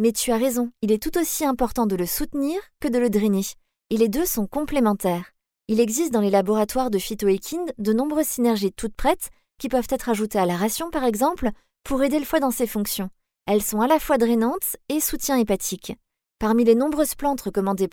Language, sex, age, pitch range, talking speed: French, female, 20-39, 210-280 Hz, 210 wpm